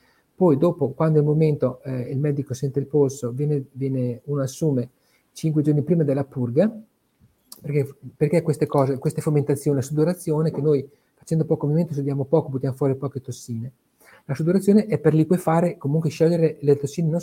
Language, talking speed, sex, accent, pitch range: Italian, 175 wpm, male, native, 140-175 Hz